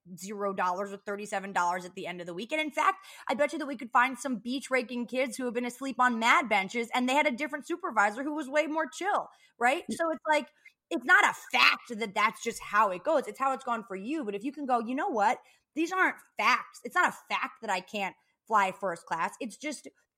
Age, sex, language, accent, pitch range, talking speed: 20-39, female, English, American, 210-285 Hz, 260 wpm